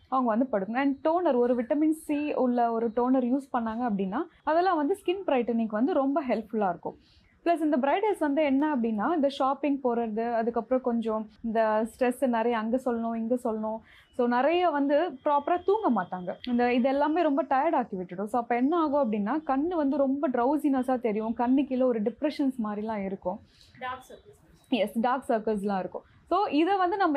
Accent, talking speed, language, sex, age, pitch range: native, 170 wpm, Tamil, female, 20-39, 235-300 Hz